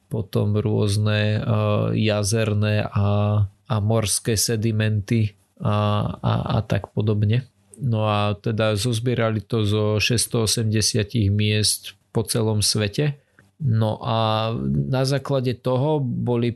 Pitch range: 105-115 Hz